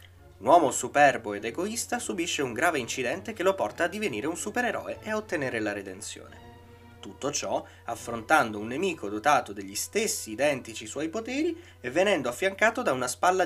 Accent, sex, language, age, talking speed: native, male, Italian, 20-39, 170 wpm